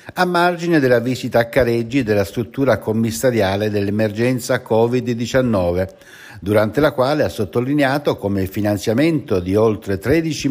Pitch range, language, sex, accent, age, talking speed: 100-140 Hz, Italian, male, native, 60-79, 125 wpm